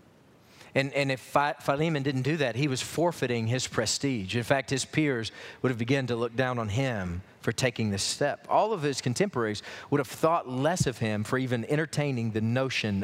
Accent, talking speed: American, 200 wpm